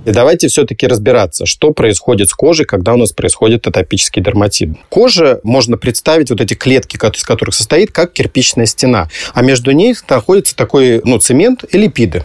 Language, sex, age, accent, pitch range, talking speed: Russian, male, 30-49, native, 115-155 Hz, 170 wpm